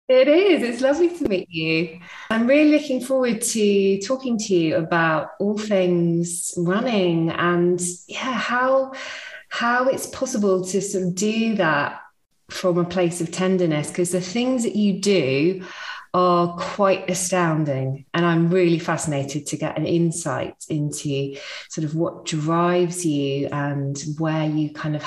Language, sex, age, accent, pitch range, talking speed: English, female, 20-39, British, 160-210 Hz, 150 wpm